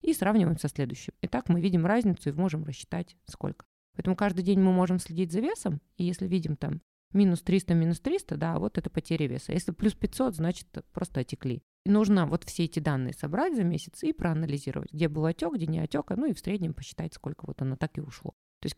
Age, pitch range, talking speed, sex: 20-39, 150-195 Hz, 220 wpm, female